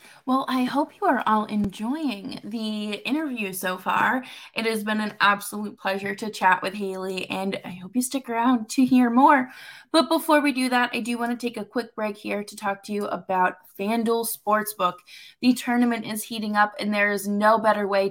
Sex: female